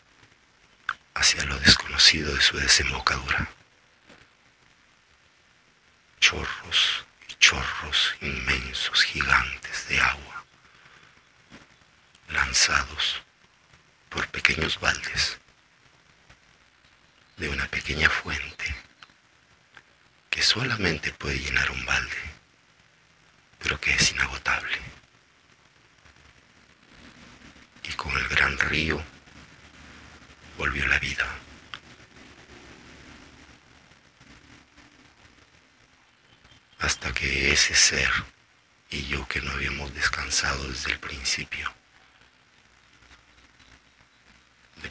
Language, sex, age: Spanish, male, 60-79